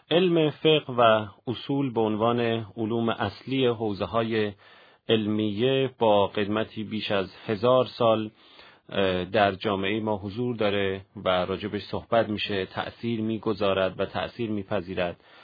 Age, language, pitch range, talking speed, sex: 40-59, Persian, 100-125 Hz, 115 wpm, male